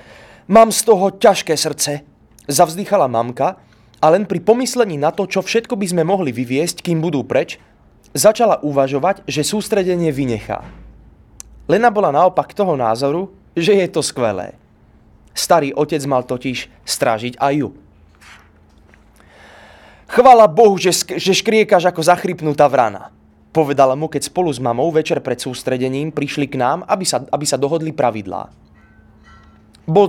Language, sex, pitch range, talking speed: Slovak, male, 125-185 Hz, 135 wpm